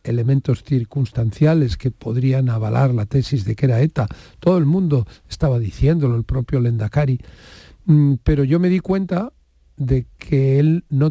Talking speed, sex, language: 150 wpm, male, Spanish